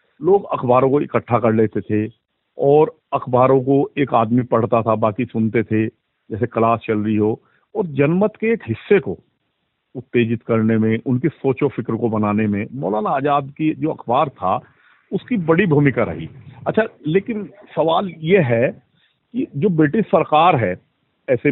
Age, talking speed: 50-69, 160 wpm